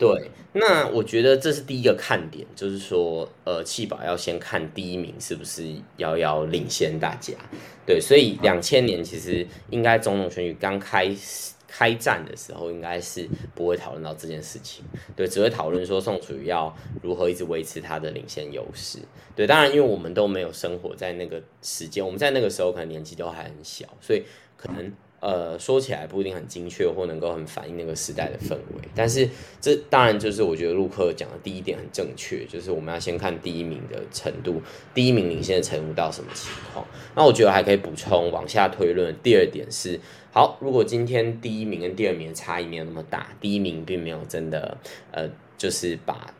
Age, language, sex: 20-39, Chinese, male